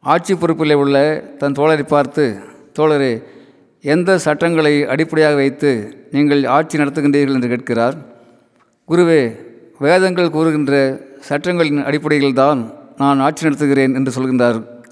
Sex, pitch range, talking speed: male, 130-155 Hz, 110 wpm